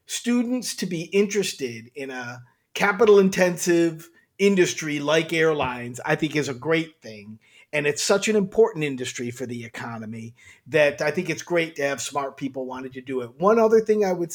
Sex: male